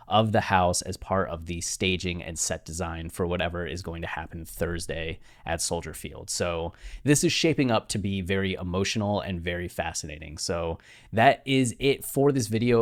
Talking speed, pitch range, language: 185 wpm, 90-105 Hz, English